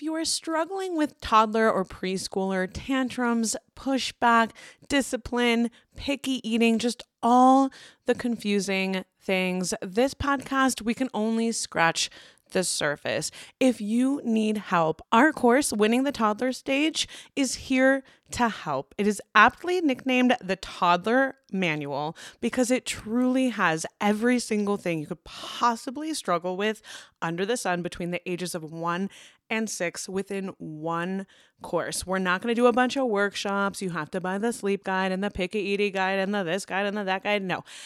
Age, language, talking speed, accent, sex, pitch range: 20-39, English, 160 wpm, American, female, 190-260 Hz